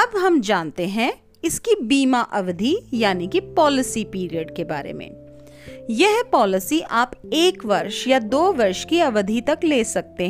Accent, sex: native, female